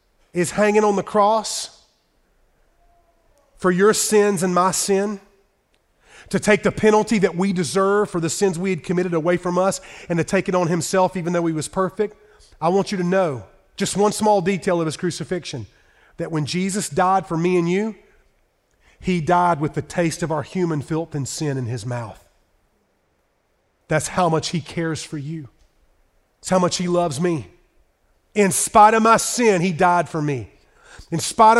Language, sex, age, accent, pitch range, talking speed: English, male, 40-59, American, 170-225 Hz, 180 wpm